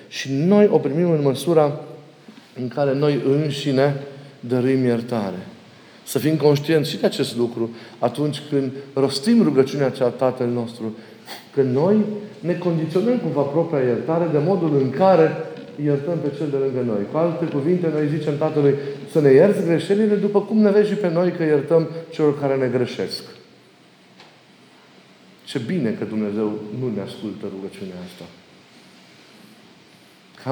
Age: 40-59